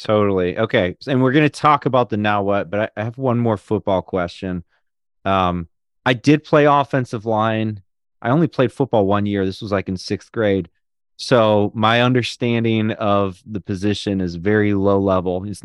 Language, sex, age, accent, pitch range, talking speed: English, male, 30-49, American, 100-125 Hz, 180 wpm